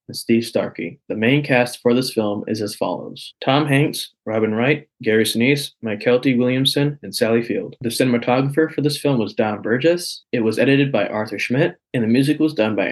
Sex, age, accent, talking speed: male, 20-39, American, 205 wpm